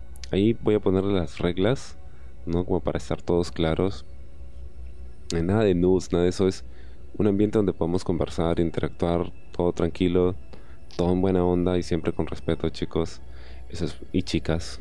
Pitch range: 70-100 Hz